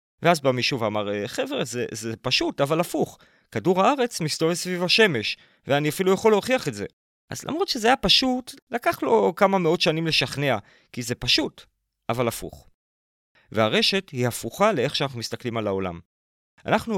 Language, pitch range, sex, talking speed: Hebrew, 125-190 Hz, male, 165 wpm